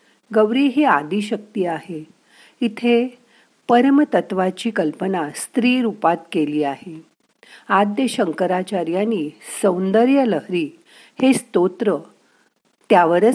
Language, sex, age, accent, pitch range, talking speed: Marathi, female, 50-69, native, 170-230 Hz, 65 wpm